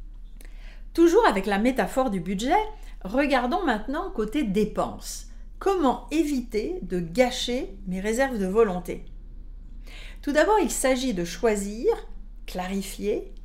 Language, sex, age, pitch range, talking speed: French, female, 50-69, 205-270 Hz, 110 wpm